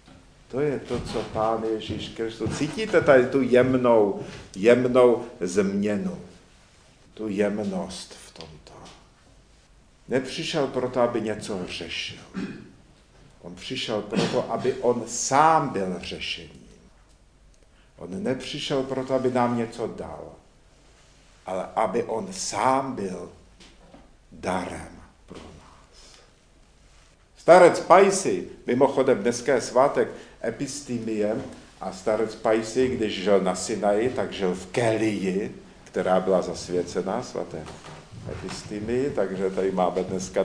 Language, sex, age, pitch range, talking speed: Czech, male, 50-69, 95-125 Hz, 105 wpm